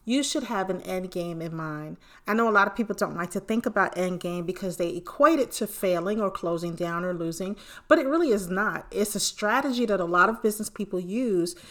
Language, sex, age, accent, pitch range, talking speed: English, female, 40-59, American, 180-220 Hz, 240 wpm